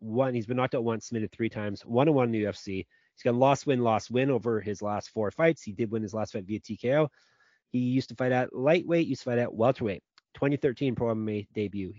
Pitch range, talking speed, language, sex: 105-135 Hz, 220 wpm, English, male